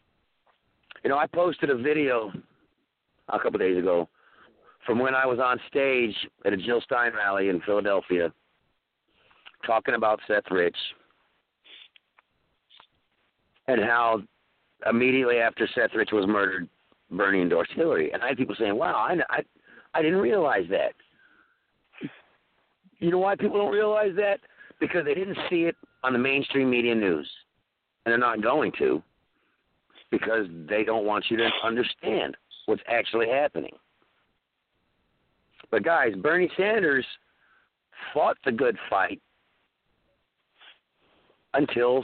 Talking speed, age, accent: 130 wpm, 50-69, American